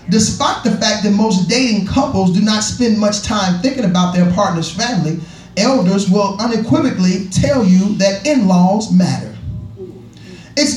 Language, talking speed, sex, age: English, 145 wpm, male, 30-49